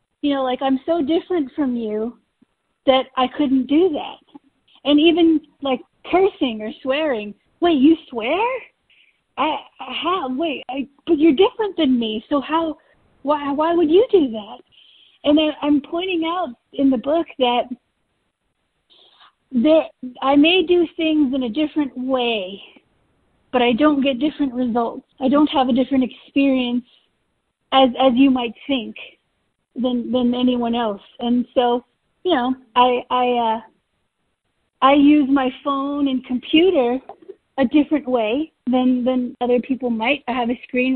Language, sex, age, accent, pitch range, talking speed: English, female, 40-59, American, 250-305 Hz, 150 wpm